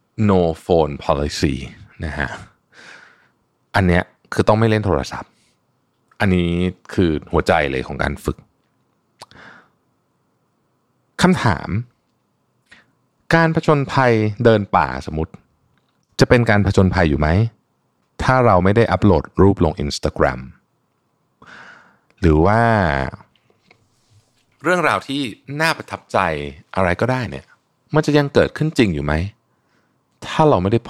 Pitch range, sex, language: 80-115 Hz, male, Thai